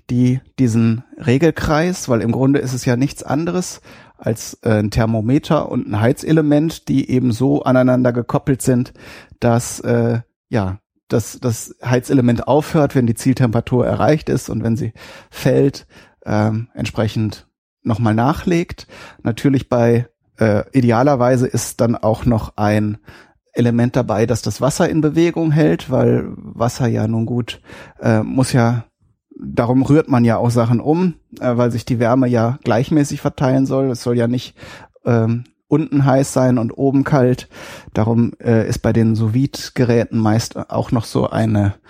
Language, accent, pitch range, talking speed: German, German, 110-135 Hz, 150 wpm